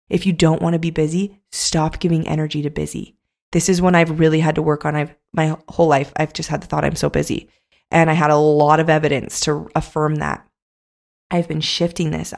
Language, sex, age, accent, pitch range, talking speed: English, female, 20-39, American, 155-180 Hz, 230 wpm